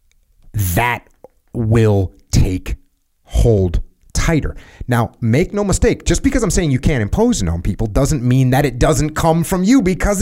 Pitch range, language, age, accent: 95-135 Hz, English, 30-49, American